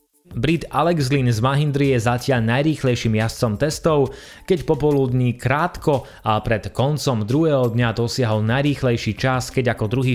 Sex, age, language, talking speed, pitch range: male, 30-49, Slovak, 140 wpm, 115-145 Hz